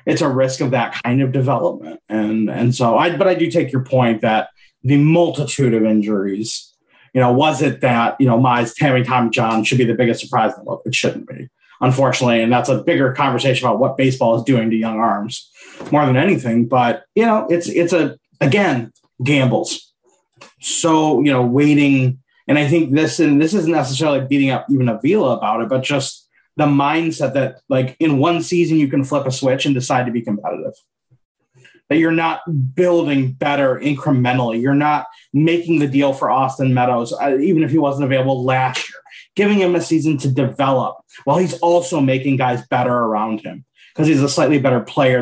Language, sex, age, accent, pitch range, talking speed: English, male, 30-49, American, 125-155 Hz, 195 wpm